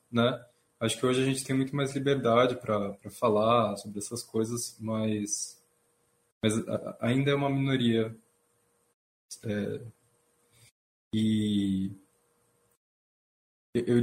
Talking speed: 105 wpm